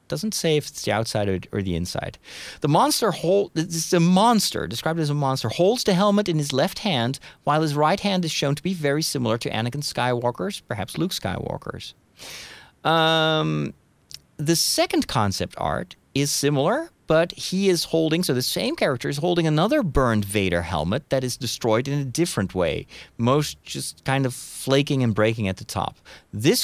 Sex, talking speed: male, 185 wpm